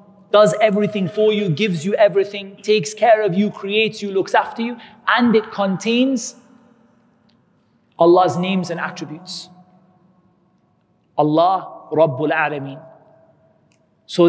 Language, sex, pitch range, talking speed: English, male, 180-235 Hz, 115 wpm